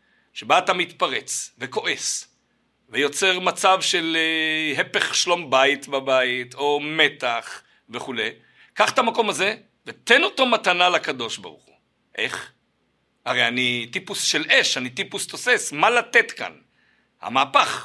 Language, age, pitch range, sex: Hebrew, 60-79, 175-240 Hz, male